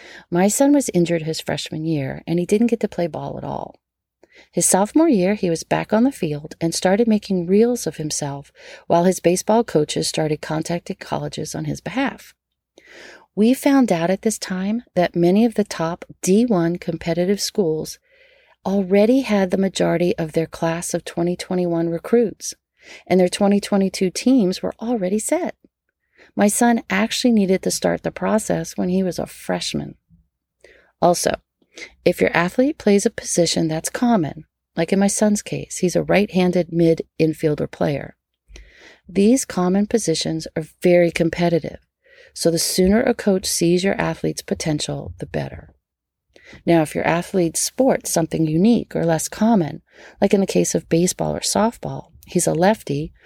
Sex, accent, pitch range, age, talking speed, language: female, American, 165-210 Hz, 40-59, 160 wpm, English